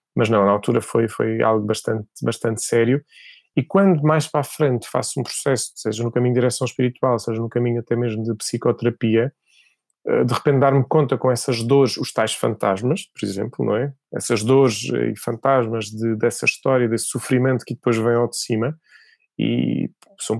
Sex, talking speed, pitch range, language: male, 185 wpm, 120-145 Hz, Portuguese